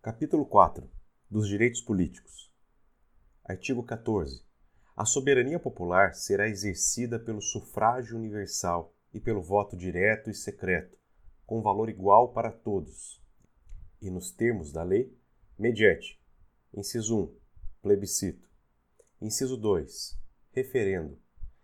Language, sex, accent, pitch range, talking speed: Portuguese, male, Brazilian, 90-115 Hz, 105 wpm